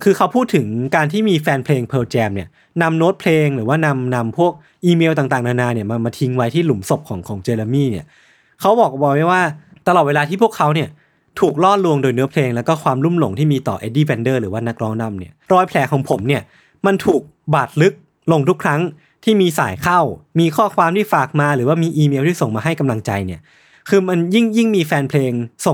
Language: Thai